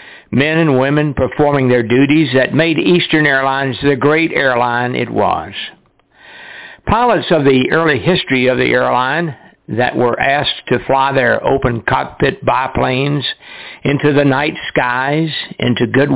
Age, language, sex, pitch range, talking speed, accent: 60-79, English, male, 125-150 Hz, 140 wpm, American